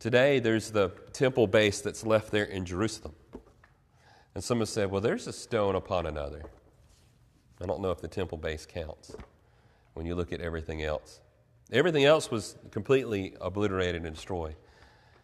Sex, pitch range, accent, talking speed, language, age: male, 100-140 Hz, American, 160 wpm, English, 40-59